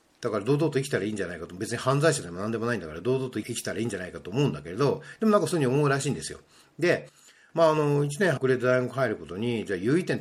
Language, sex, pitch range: Japanese, male, 110-160 Hz